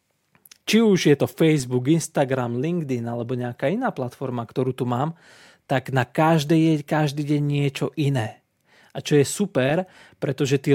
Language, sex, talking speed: Slovak, male, 155 wpm